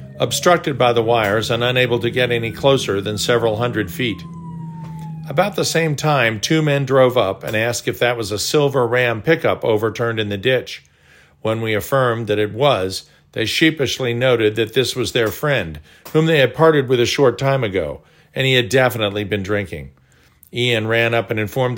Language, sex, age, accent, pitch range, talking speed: English, male, 50-69, American, 105-135 Hz, 190 wpm